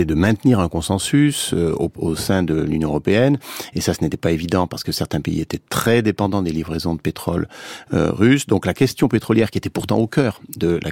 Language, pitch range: French, 90-120 Hz